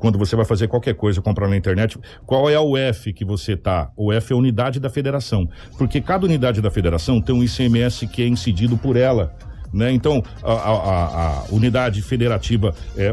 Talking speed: 195 wpm